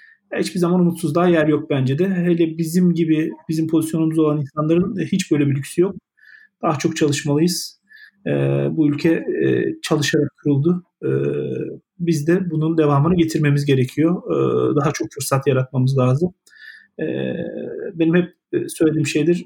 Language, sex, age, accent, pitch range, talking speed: Turkish, male, 40-59, native, 155-215 Hz, 140 wpm